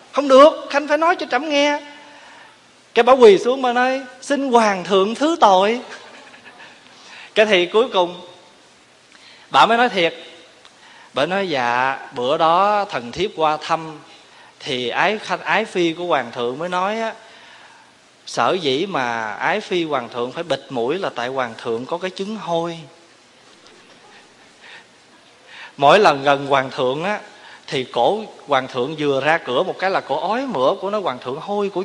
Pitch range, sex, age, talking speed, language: 150-235 Hz, male, 20-39, 170 wpm, Vietnamese